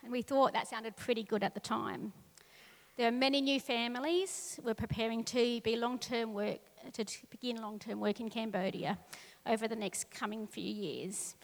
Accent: Australian